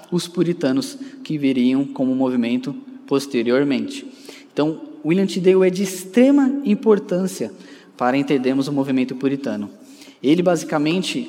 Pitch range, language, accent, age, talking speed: 140-200 Hz, Portuguese, Brazilian, 10-29, 115 wpm